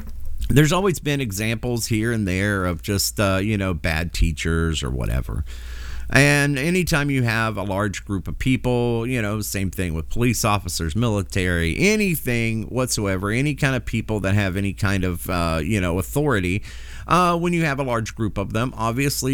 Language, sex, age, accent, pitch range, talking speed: English, male, 40-59, American, 90-130 Hz, 180 wpm